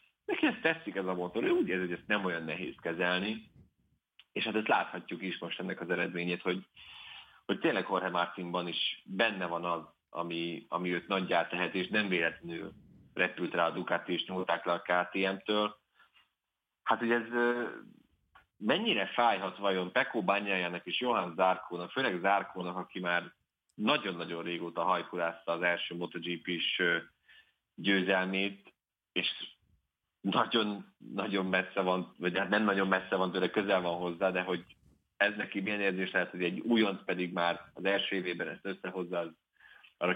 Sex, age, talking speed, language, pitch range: male, 30-49, 155 wpm, Hungarian, 85-100 Hz